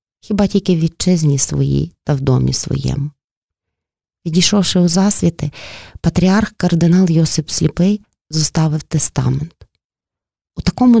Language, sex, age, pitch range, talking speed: Ukrainian, female, 20-39, 150-185 Hz, 105 wpm